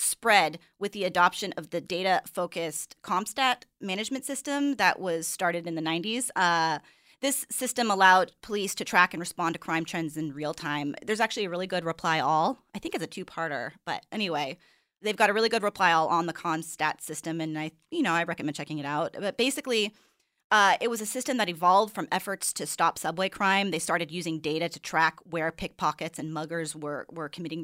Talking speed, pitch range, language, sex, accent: 200 wpm, 165-215 Hz, English, female, American